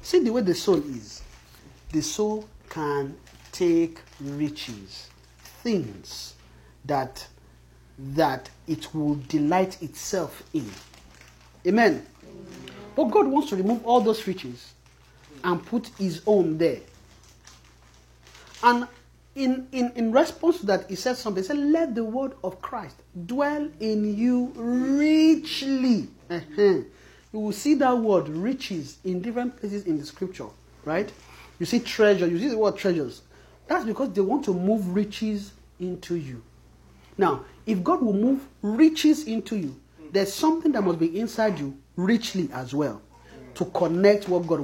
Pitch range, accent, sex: 140-235 Hz, Nigerian, male